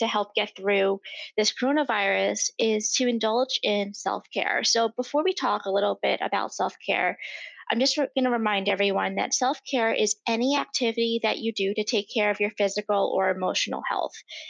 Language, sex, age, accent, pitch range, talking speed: English, female, 20-39, American, 210-265 Hz, 180 wpm